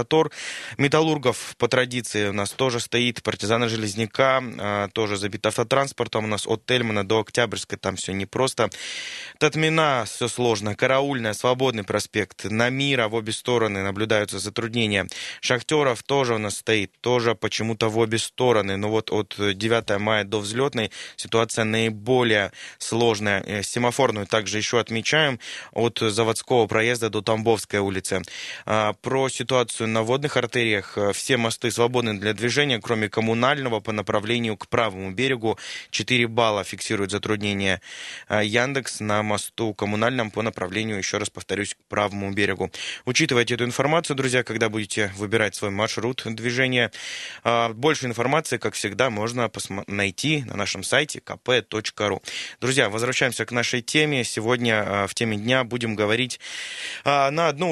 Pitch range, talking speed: 105-125 Hz, 140 wpm